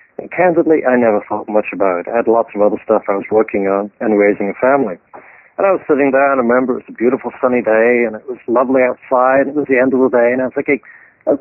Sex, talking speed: male, 285 wpm